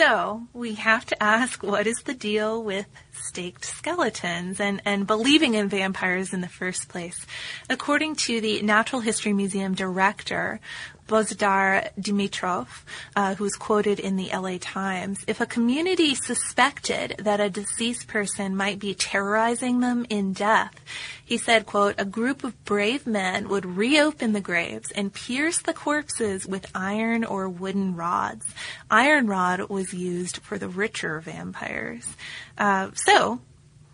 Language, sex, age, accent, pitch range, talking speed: English, female, 20-39, American, 190-225 Hz, 145 wpm